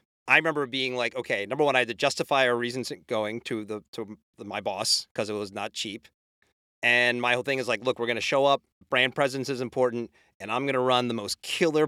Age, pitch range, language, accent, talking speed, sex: 30-49, 120-150 Hz, English, American, 235 wpm, male